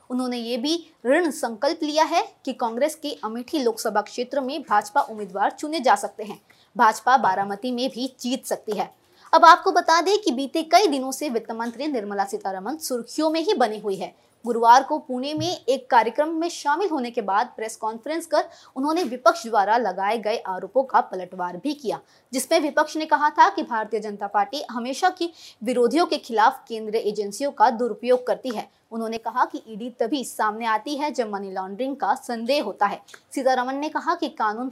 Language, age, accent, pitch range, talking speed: Hindi, 20-39, native, 215-295 Hz, 190 wpm